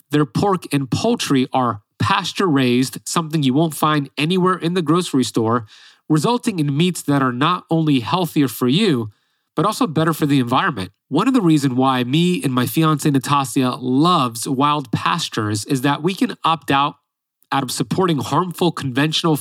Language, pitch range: English, 130-165 Hz